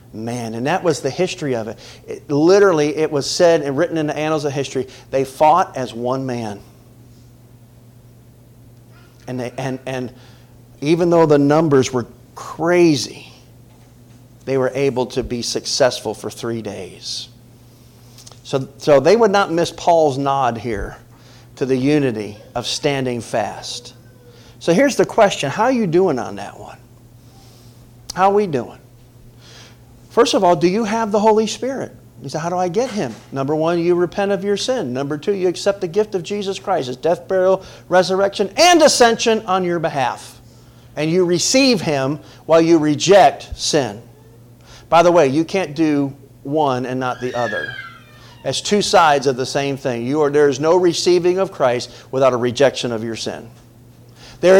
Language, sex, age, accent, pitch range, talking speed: English, male, 40-59, American, 120-175 Hz, 170 wpm